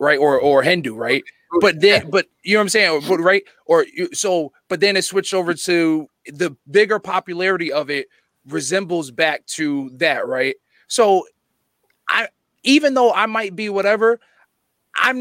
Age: 30-49